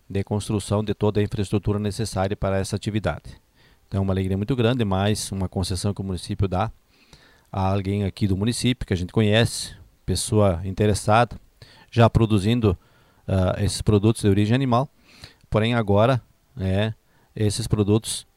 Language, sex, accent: Portuguese, male, Brazilian